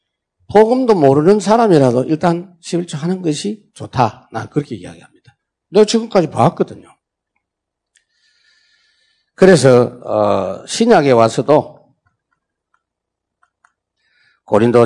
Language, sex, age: Korean, male, 50-69